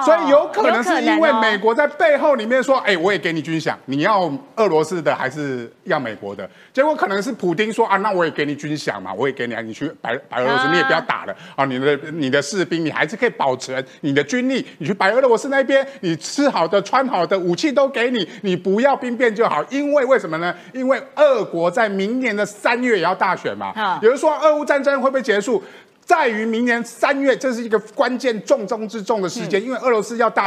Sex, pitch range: male, 175-265 Hz